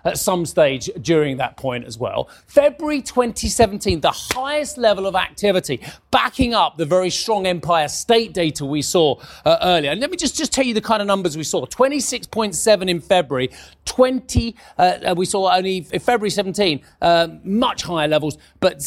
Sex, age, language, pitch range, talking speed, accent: male, 30-49, English, 150-215 Hz, 175 wpm, British